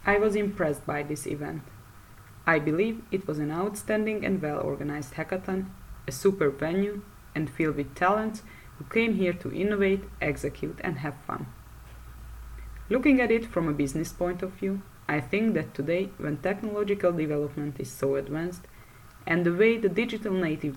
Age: 20-39